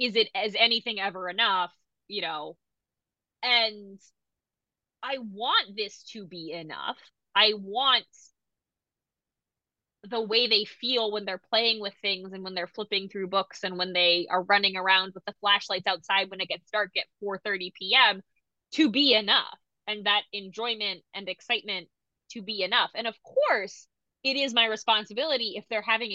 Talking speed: 160 wpm